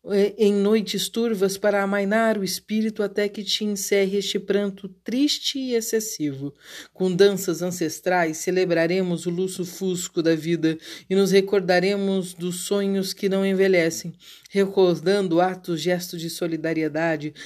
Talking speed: 130 wpm